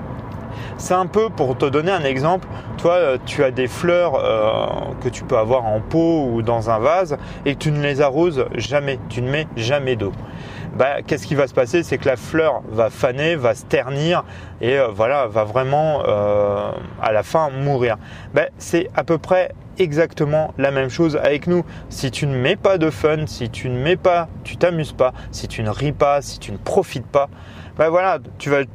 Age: 30-49